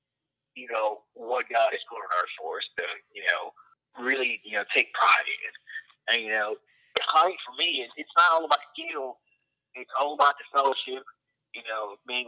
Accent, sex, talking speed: American, male, 190 wpm